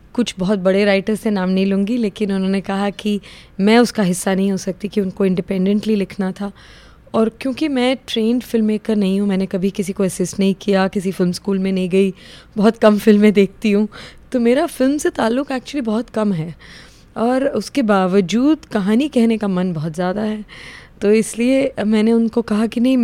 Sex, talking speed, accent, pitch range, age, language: female, 195 wpm, native, 195-230 Hz, 20-39, Hindi